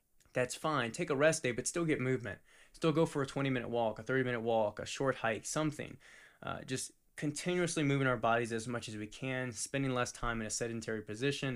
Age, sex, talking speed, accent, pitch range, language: 20-39, male, 225 wpm, American, 115-145 Hz, English